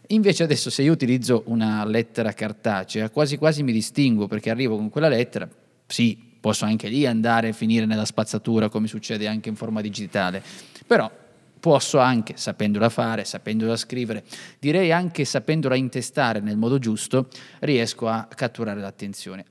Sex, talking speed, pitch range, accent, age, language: male, 155 wpm, 110-135 Hz, native, 30-49, Italian